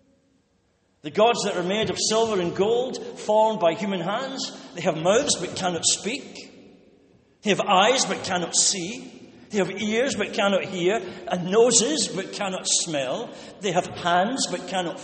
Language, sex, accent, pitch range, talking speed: English, male, British, 180-225 Hz, 165 wpm